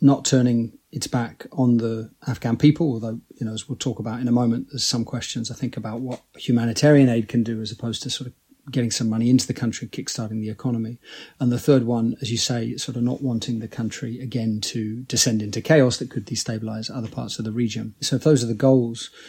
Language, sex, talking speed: English, male, 235 wpm